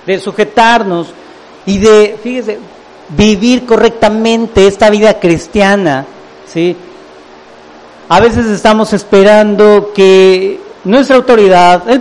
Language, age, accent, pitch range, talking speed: English, 50-69, Mexican, 175-225 Hz, 95 wpm